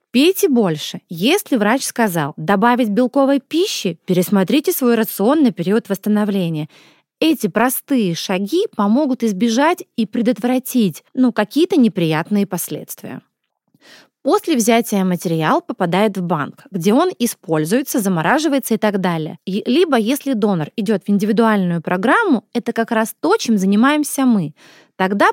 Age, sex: 20-39, female